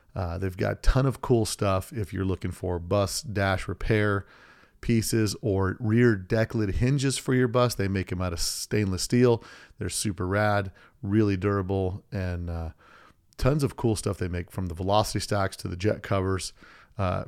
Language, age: English, 40-59